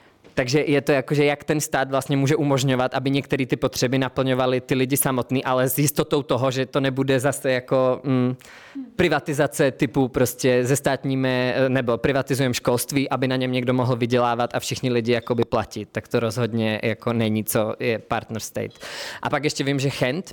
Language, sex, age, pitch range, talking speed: Czech, male, 20-39, 120-135 Hz, 185 wpm